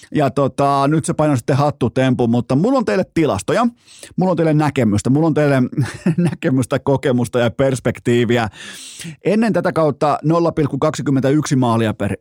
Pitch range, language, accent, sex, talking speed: 120-155 Hz, Finnish, native, male, 145 wpm